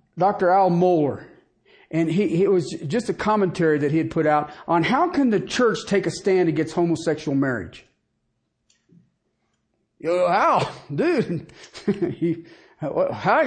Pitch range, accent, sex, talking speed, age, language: 155-240 Hz, American, male, 145 wpm, 50-69, English